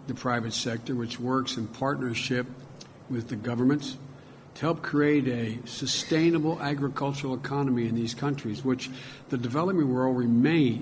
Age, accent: 60-79, American